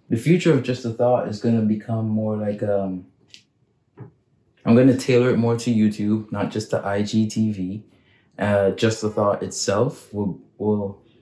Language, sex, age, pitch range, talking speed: English, male, 20-39, 100-115 Hz, 170 wpm